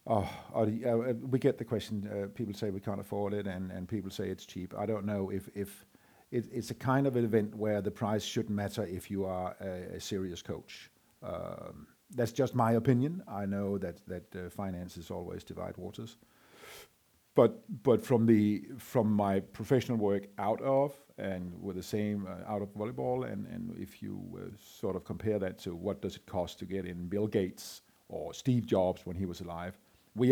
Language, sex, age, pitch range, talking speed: Danish, male, 50-69, 90-110 Hz, 200 wpm